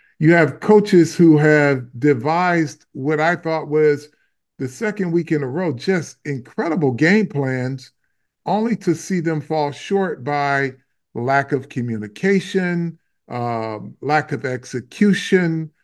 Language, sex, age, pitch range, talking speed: English, male, 50-69, 145-195 Hz, 130 wpm